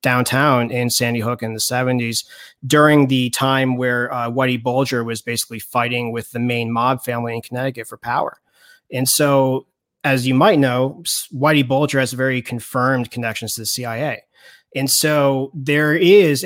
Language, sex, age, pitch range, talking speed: English, male, 30-49, 115-135 Hz, 165 wpm